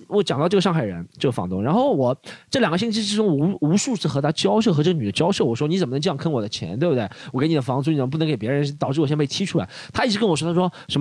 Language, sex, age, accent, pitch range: Chinese, male, 20-39, native, 125-175 Hz